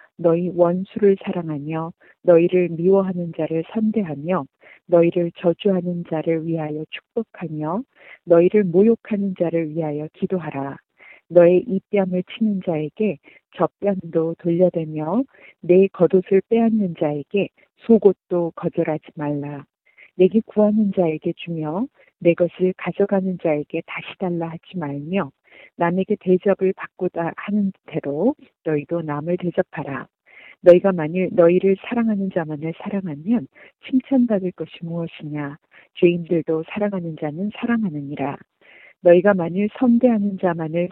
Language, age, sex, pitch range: Korean, 40-59, female, 165-200 Hz